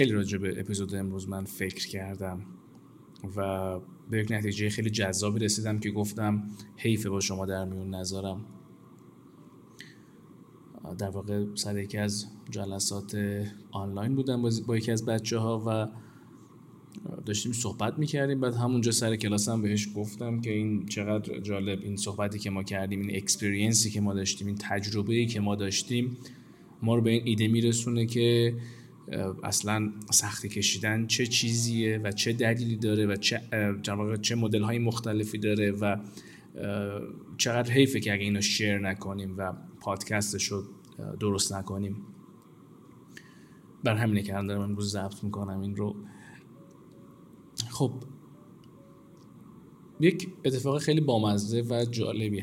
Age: 20-39